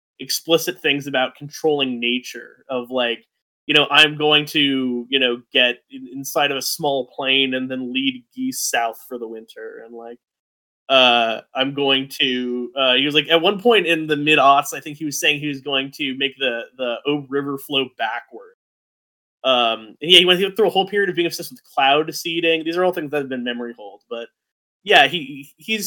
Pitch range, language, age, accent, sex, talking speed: 130-170 Hz, English, 20-39, American, male, 205 wpm